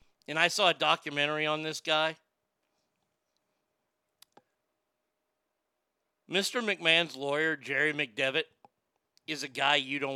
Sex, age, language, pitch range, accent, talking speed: male, 50-69, English, 140-185 Hz, American, 105 wpm